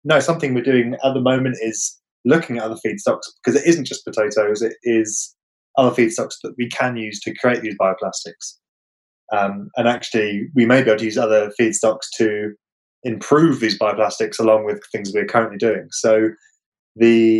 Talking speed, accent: 180 wpm, British